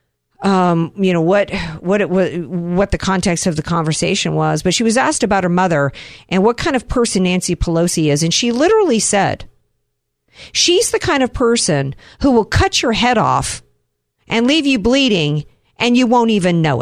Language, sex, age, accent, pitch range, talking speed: English, female, 50-69, American, 160-230 Hz, 195 wpm